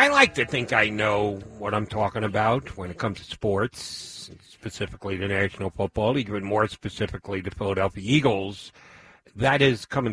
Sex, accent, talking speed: male, American, 170 wpm